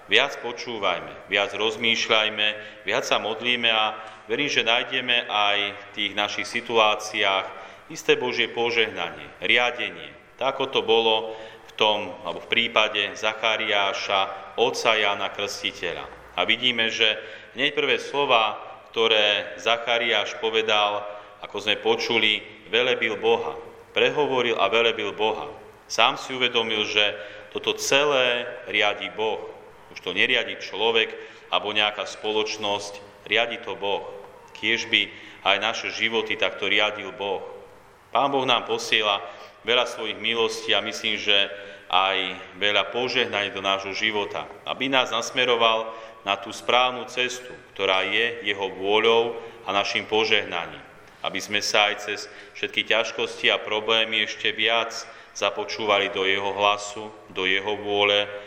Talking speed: 130 wpm